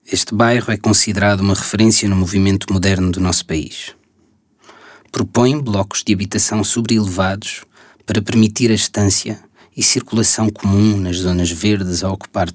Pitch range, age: 95-110 Hz, 20-39